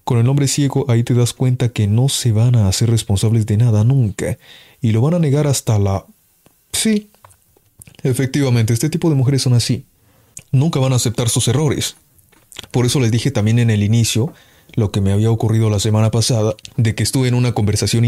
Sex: male